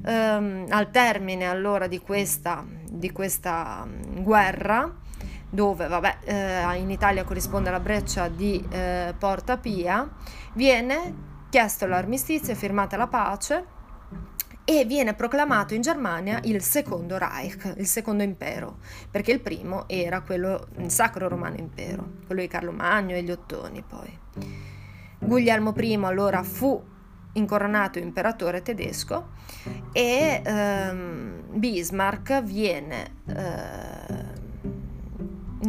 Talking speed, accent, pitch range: 115 wpm, native, 180-220 Hz